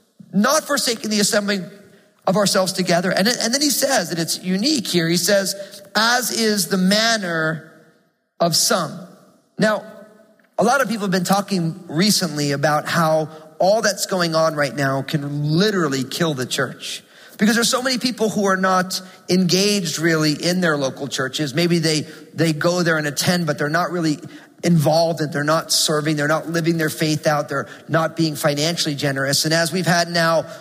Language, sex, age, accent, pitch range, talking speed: English, male, 40-59, American, 155-195 Hz, 180 wpm